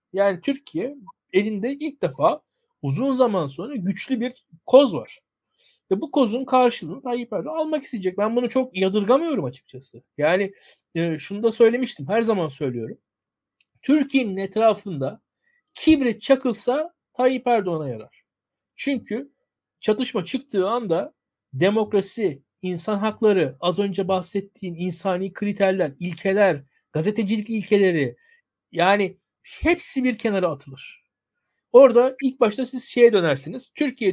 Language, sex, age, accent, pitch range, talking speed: Turkish, male, 60-79, native, 190-235 Hz, 115 wpm